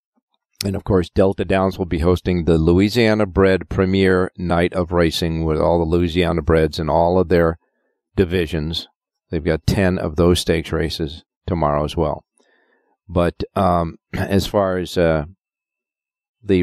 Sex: male